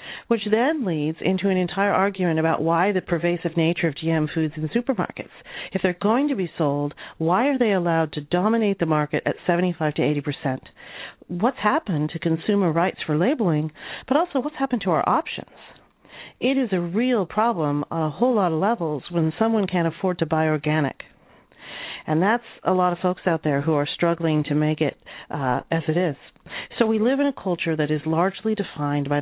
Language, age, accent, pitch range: English, 50-69, American, 155-205 Hz